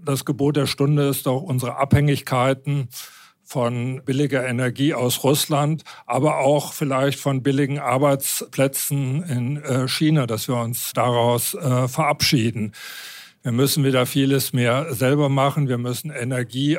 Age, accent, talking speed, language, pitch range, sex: 50-69, German, 130 wpm, English, 125-140 Hz, male